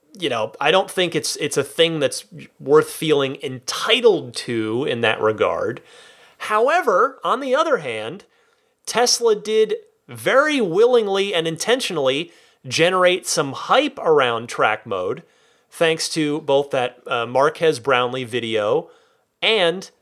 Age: 30-49